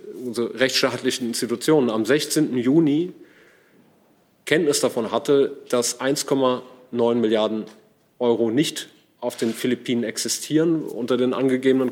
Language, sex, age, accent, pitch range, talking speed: German, male, 30-49, German, 115-135 Hz, 105 wpm